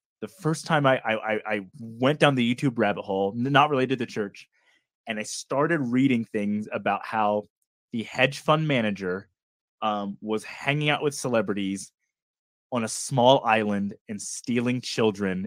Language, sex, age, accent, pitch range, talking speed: English, male, 20-39, American, 110-150 Hz, 160 wpm